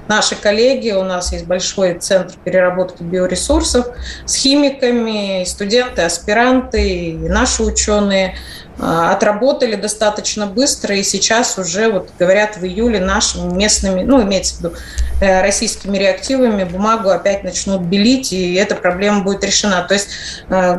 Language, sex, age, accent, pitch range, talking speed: Russian, female, 30-49, native, 185-225 Hz, 130 wpm